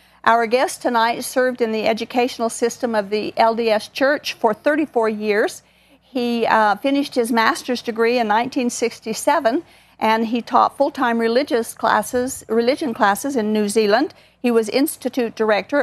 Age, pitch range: 50-69, 225-280 Hz